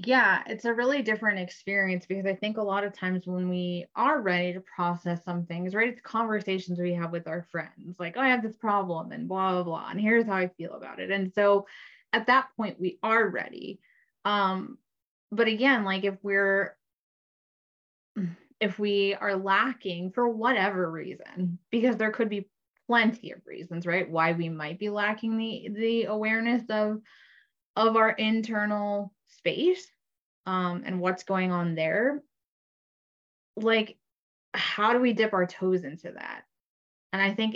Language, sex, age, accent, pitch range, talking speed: English, female, 20-39, American, 180-220 Hz, 170 wpm